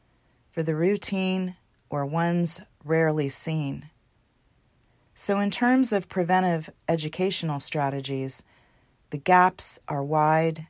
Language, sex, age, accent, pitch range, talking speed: English, female, 40-59, American, 135-175 Hz, 100 wpm